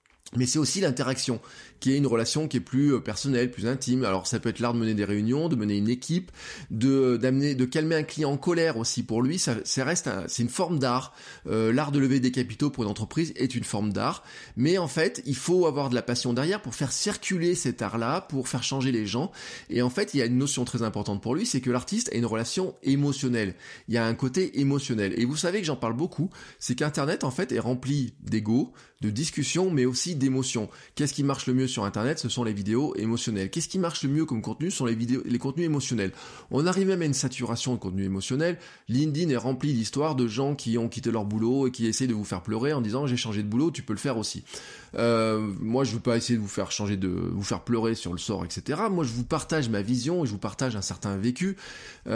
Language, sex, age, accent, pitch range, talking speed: French, male, 20-39, French, 110-140 Hz, 255 wpm